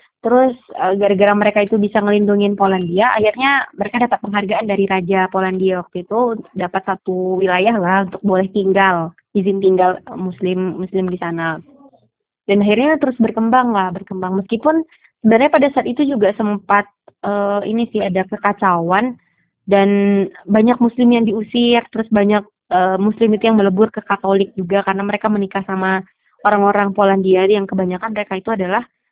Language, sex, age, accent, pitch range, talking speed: Indonesian, female, 20-39, native, 190-225 Hz, 150 wpm